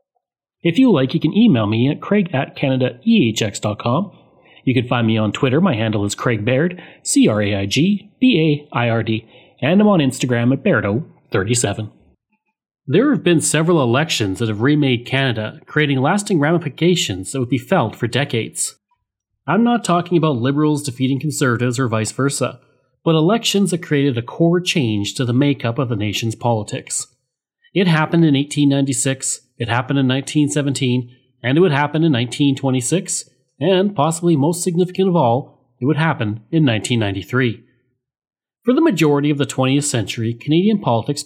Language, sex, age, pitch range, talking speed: English, male, 30-49, 120-170 Hz, 155 wpm